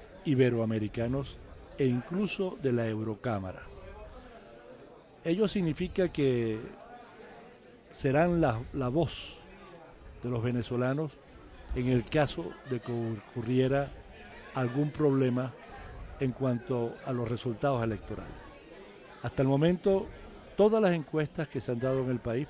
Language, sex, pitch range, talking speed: Spanish, male, 115-140 Hz, 115 wpm